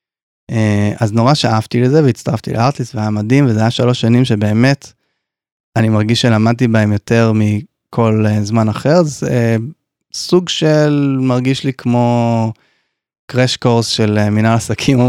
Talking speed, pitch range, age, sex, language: 145 wpm, 110-125 Hz, 20-39, male, Hebrew